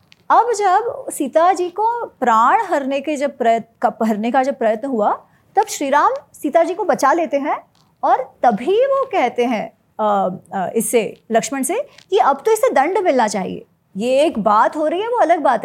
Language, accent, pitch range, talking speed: Hindi, native, 240-315 Hz, 180 wpm